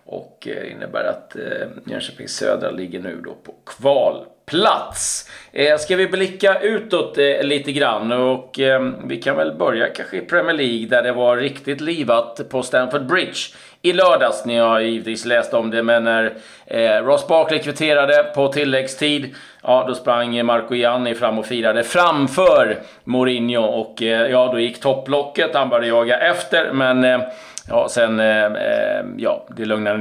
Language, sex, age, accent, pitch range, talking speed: Swedish, male, 30-49, native, 120-150 Hz, 160 wpm